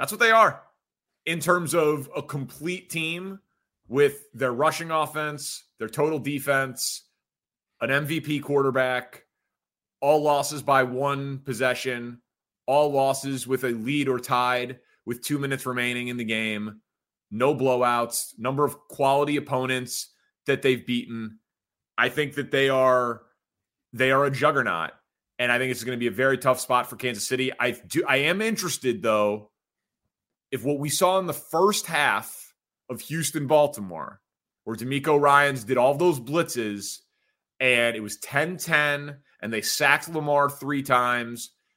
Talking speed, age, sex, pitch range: 150 wpm, 30-49, male, 125-150 Hz